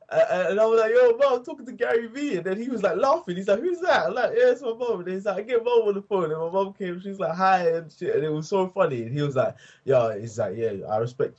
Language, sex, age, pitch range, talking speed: English, male, 20-39, 110-165 Hz, 320 wpm